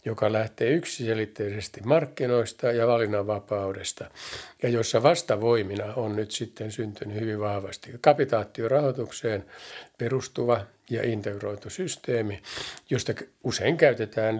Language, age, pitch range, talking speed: Finnish, 60-79, 105-125 Hz, 95 wpm